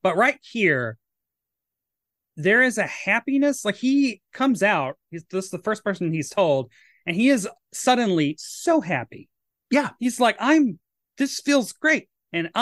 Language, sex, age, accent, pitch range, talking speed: English, male, 30-49, American, 145-205 Hz, 150 wpm